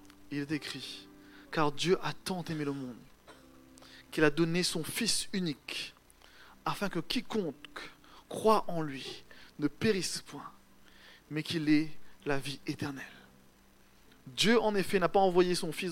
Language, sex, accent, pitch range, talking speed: French, male, French, 140-190 Hz, 145 wpm